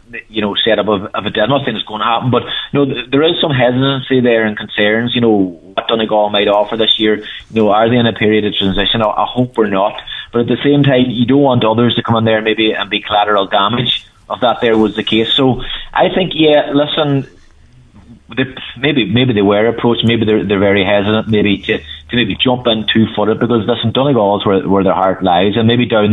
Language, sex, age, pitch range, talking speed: English, male, 30-49, 100-115 Hz, 240 wpm